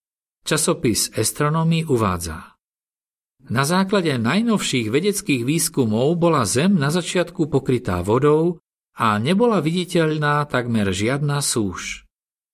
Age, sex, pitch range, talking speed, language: 50-69, male, 115-160 Hz, 95 wpm, Slovak